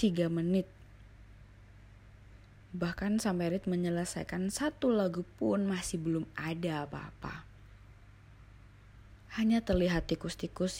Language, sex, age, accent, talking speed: Indonesian, female, 20-39, native, 90 wpm